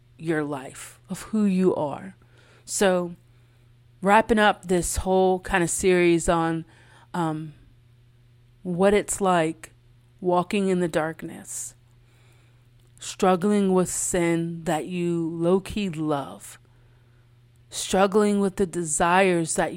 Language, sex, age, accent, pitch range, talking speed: English, female, 30-49, American, 120-185 Hz, 105 wpm